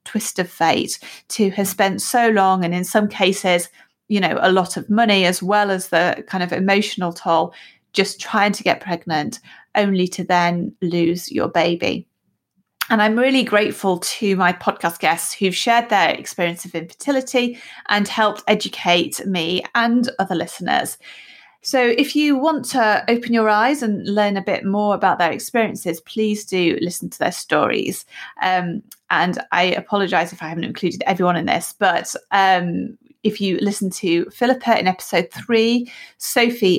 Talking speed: 165 wpm